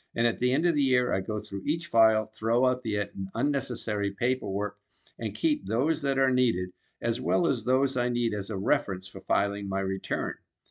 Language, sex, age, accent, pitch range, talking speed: English, male, 50-69, American, 100-125 Hz, 200 wpm